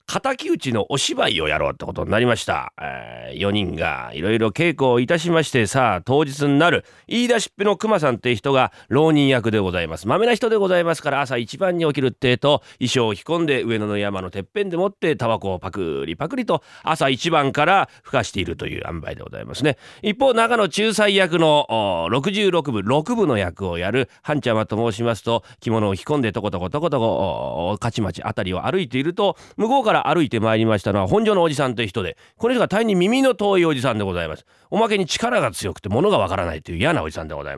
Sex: male